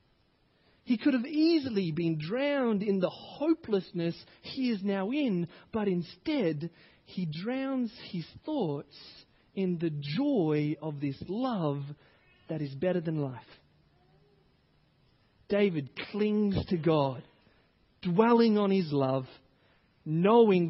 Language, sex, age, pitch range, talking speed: English, male, 30-49, 150-200 Hz, 115 wpm